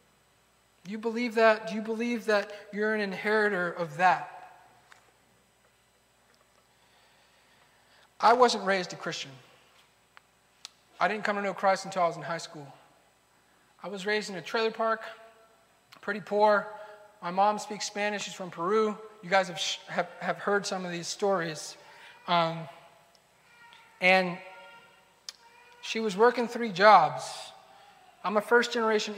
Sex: male